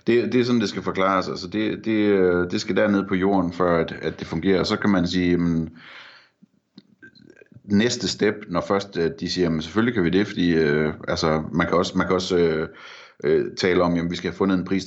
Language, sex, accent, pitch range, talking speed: Danish, male, native, 85-100 Hz, 235 wpm